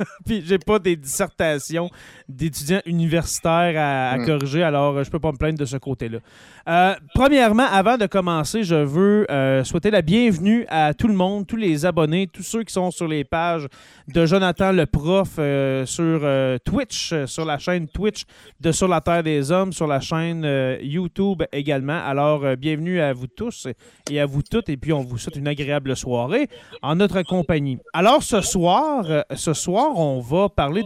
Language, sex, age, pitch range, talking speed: French, male, 30-49, 145-185 Hz, 195 wpm